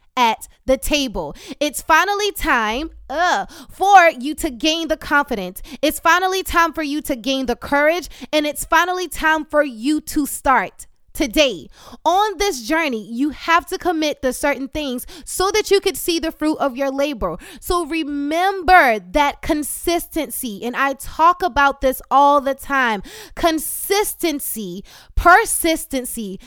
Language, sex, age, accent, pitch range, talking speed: English, female, 20-39, American, 270-340 Hz, 145 wpm